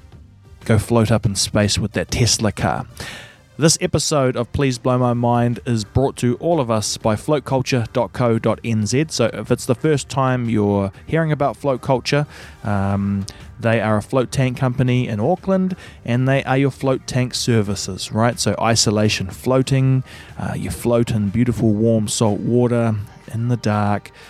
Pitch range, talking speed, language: 105-130 Hz, 165 wpm, English